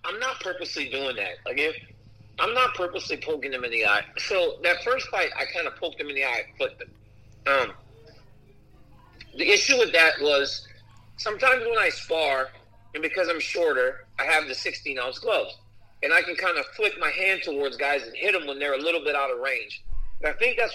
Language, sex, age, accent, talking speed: English, male, 40-59, American, 210 wpm